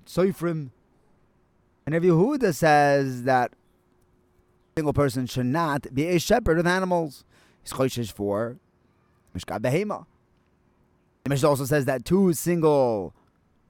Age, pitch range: 30-49, 110-155 Hz